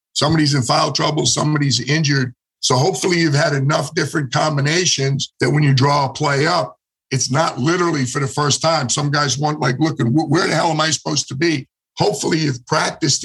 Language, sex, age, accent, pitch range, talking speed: English, male, 50-69, American, 140-160 Hz, 195 wpm